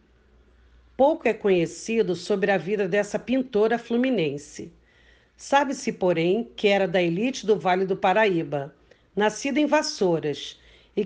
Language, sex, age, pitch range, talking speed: Portuguese, female, 50-69, 180-235 Hz, 125 wpm